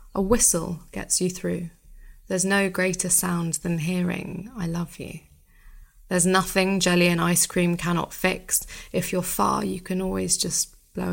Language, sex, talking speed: English, female, 160 wpm